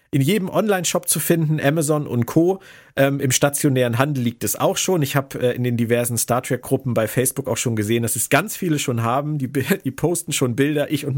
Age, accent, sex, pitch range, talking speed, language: 40-59, German, male, 115-150 Hz, 220 wpm, German